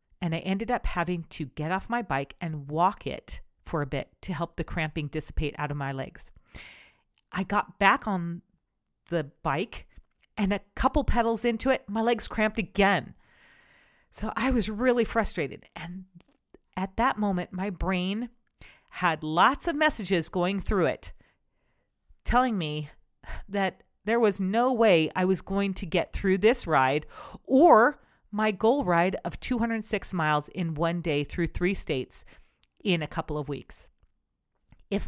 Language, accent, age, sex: English, American, 40-59, female